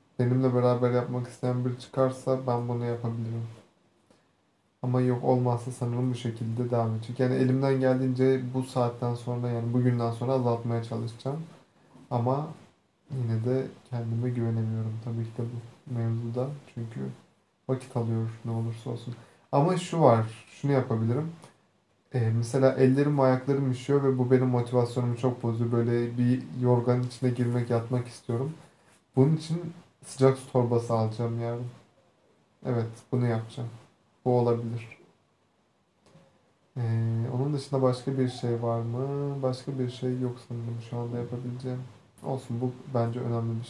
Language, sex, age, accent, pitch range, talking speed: Turkish, male, 30-49, native, 120-130 Hz, 135 wpm